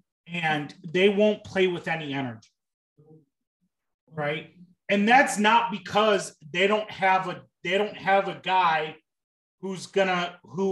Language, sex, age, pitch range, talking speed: English, male, 30-49, 160-210 Hz, 135 wpm